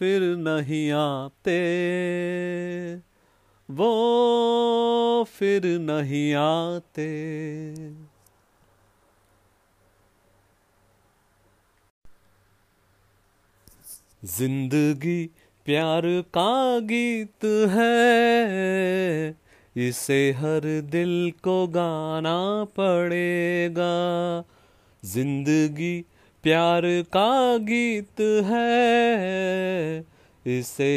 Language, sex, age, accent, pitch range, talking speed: Hindi, male, 30-49, native, 145-200 Hz, 45 wpm